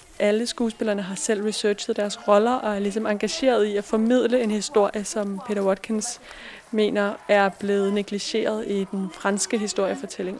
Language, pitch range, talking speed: Danish, 205-230 Hz, 155 wpm